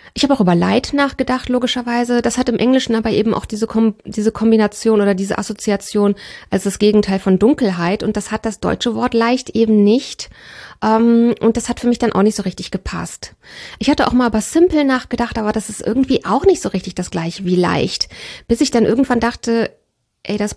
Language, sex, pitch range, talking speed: German, female, 200-240 Hz, 205 wpm